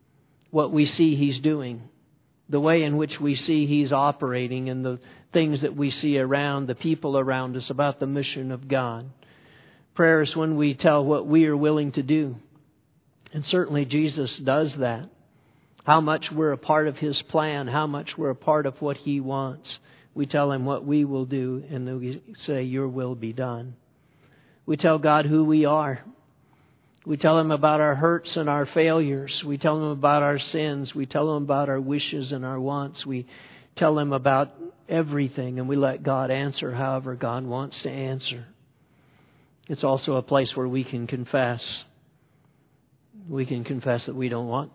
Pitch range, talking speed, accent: 130-150 Hz, 180 wpm, American